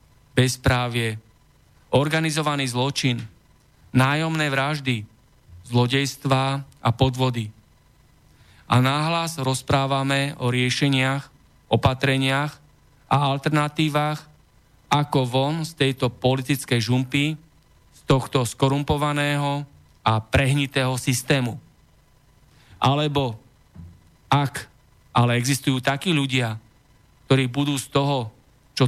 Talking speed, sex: 80 wpm, male